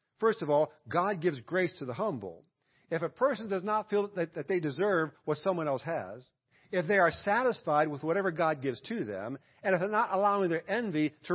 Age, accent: 50-69, American